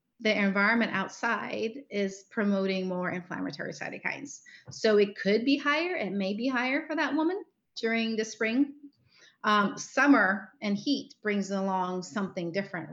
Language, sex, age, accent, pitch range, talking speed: English, female, 30-49, American, 195-235 Hz, 145 wpm